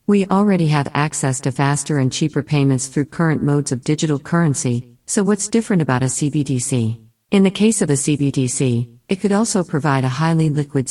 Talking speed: 185 wpm